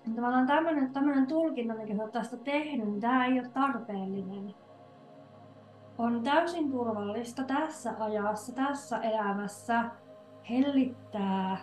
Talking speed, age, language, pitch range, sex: 110 wpm, 30-49, Finnish, 205-255 Hz, female